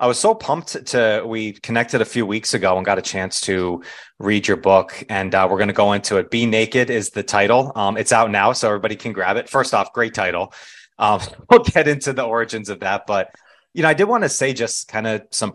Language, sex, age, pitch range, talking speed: English, male, 30-49, 100-120 Hz, 250 wpm